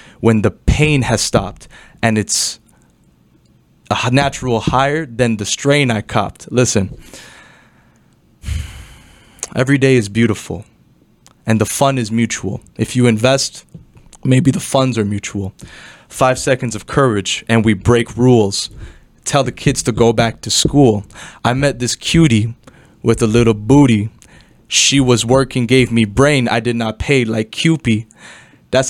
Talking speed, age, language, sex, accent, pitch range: 145 wpm, 20-39, English, male, American, 110-130 Hz